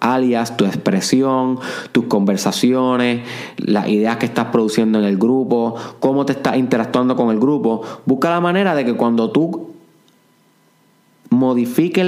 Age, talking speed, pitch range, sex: 20-39, 140 wpm, 120-165 Hz, male